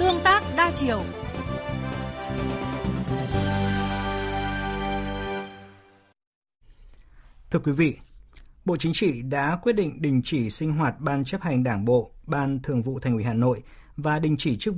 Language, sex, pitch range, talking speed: Vietnamese, male, 120-155 Hz, 130 wpm